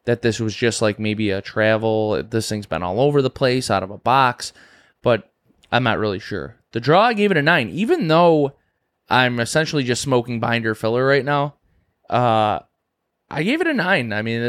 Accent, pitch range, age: American, 110-130 Hz, 20-39